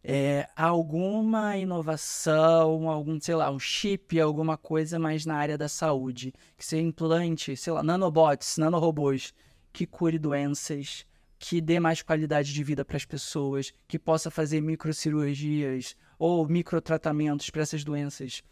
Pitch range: 150-180 Hz